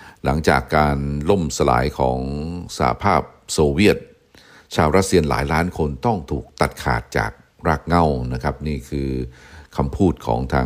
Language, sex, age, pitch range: Thai, male, 60-79, 65-85 Hz